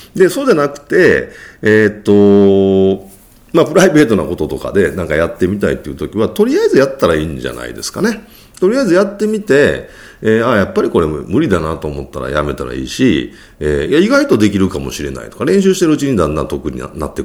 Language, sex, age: Japanese, male, 40-59